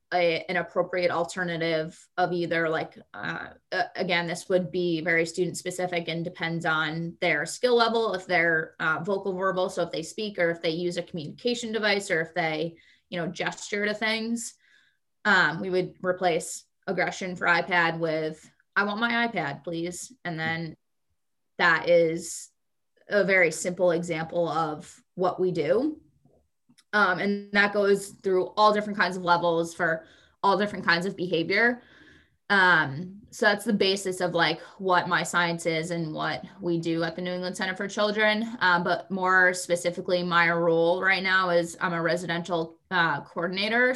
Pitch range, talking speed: 170-195 Hz, 165 wpm